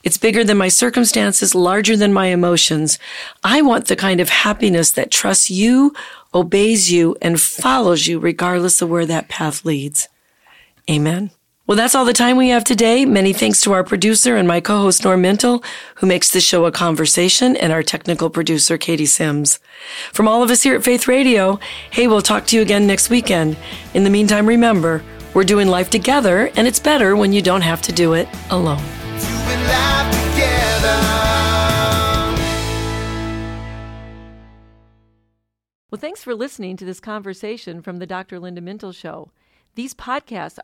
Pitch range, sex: 170-230 Hz, female